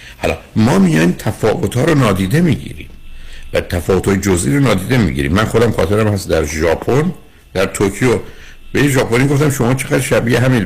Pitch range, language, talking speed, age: 75-120 Hz, Persian, 165 wpm, 60-79